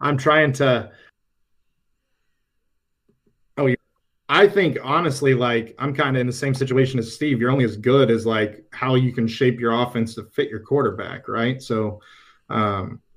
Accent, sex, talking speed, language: American, male, 165 wpm, English